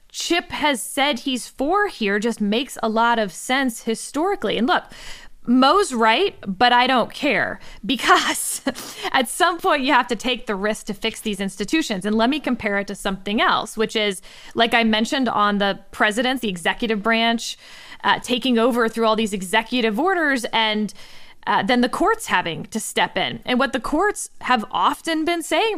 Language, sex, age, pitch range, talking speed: English, female, 20-39, 210-270 Hz, 185 wpm